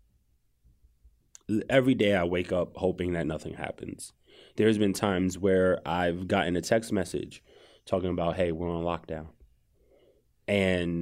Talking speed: 135 wpm